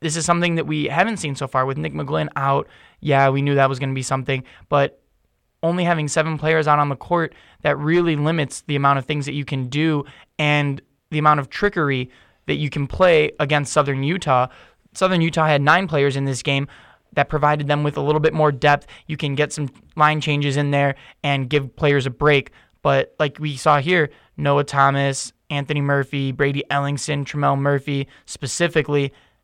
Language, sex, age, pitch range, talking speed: English, male, 20-39, 140-160 Hz, 200 wpm